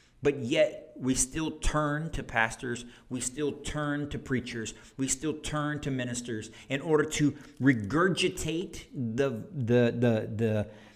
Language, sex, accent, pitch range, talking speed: English, male, American, 120-155 Hz, 135 wpm